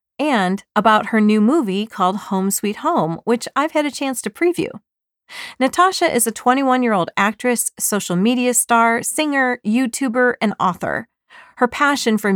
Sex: female